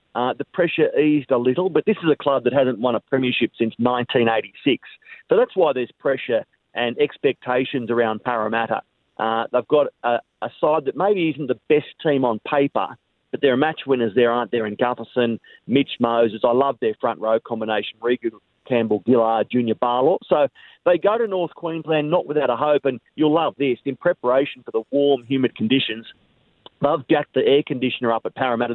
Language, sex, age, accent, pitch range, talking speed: English, male, 40-59, Australian, 120-155 Hz, 195 wpm